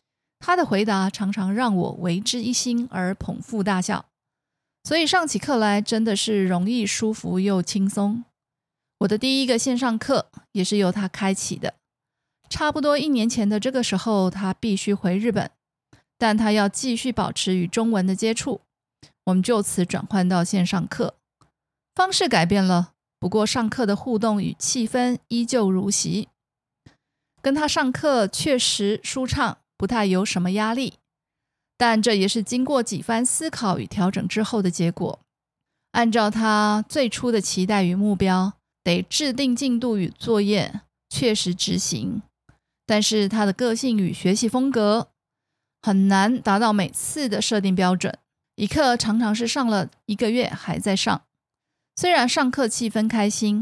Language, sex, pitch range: Chinese, female, 195-235 Hz